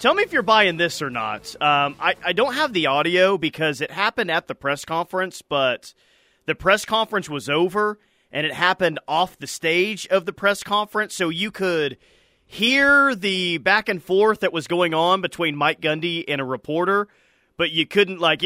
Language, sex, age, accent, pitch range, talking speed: English, male, 30-49, American, 150-200 Hz, 195 wpm